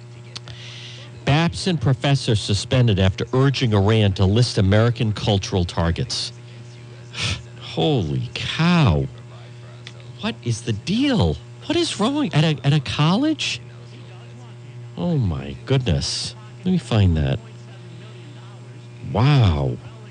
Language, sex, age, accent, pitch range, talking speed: English, male, 50-69, American, 120-135 Hz, 100 wpm